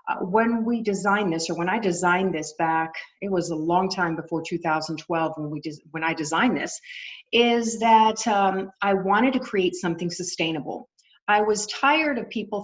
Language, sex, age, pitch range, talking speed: English, female, 40-59, 170-225 Hz, 185 wpm